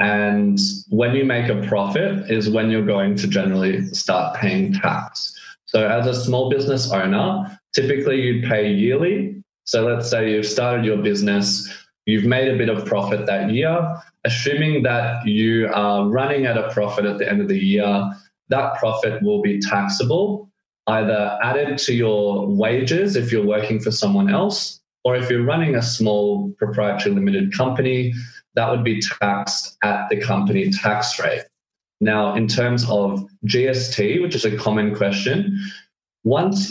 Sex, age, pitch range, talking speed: male, 20-39, 105-160 Hz, 160 wpm